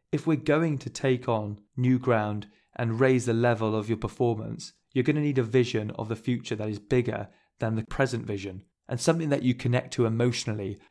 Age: 20-39